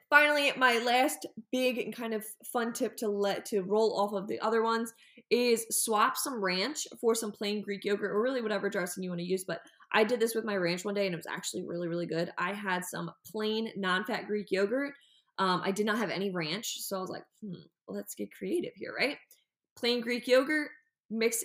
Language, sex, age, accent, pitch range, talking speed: English, female, 20-39, American, 195-245 Hz, 220 wpm